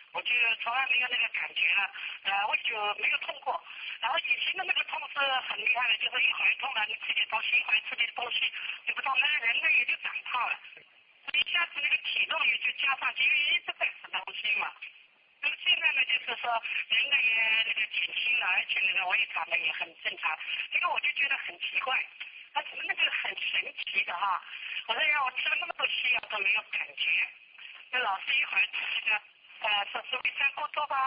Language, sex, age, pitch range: English, male, 50-69, 210-310 Hz